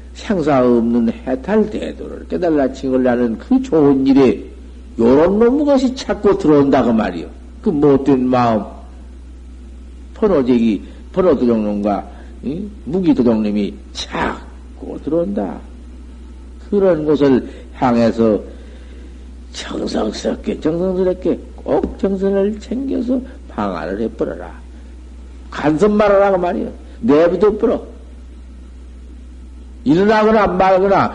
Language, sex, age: Korean, male, 50-69